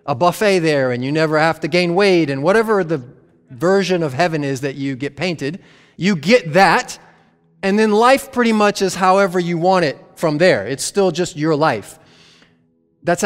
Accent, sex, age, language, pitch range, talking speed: American, male, 30-49, English, 135-190 Hz, 190 wpm